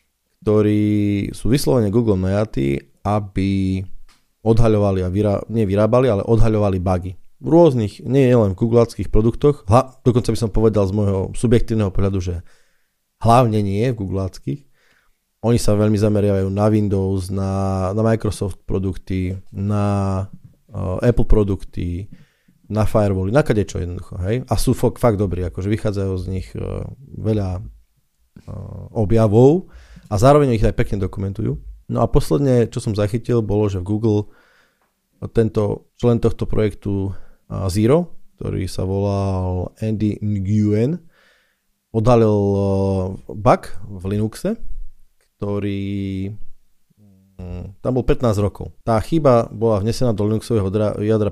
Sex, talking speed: male, 125 wpm